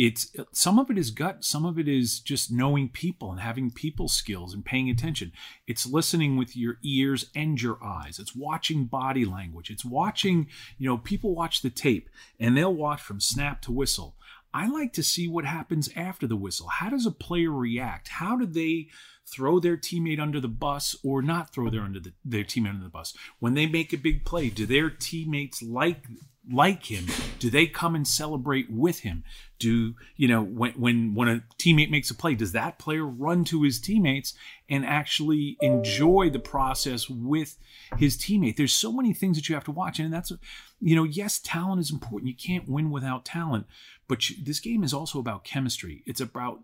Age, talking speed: 40-59, 200 wpm